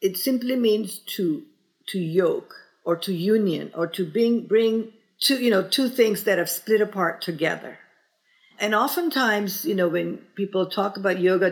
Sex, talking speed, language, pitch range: female, 165 wpm, English, 180-230 Hz